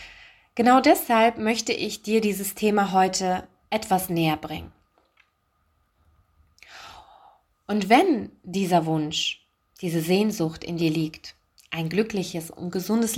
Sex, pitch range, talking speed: female, 165-230 Hz, 110 wpm